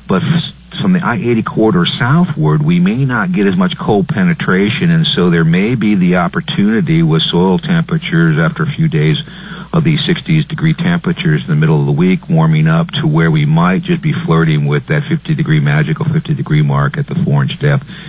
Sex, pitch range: male, 145-170 Hz